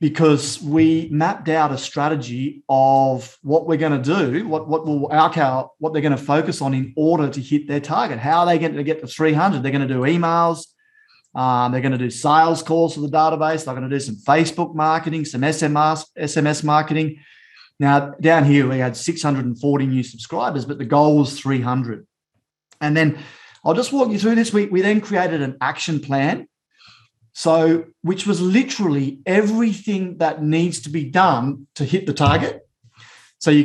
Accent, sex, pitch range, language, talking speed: Australian, male, 140-165 Hz, English, 190 wpm